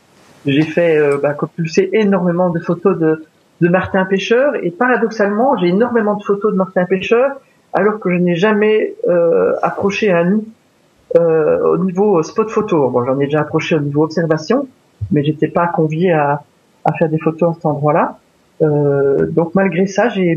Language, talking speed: French, 175 wpm